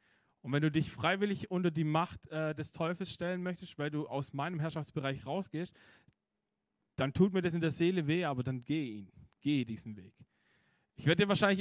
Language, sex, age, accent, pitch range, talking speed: German, male, 40-59, German, 130-175 Hz, 195 wpm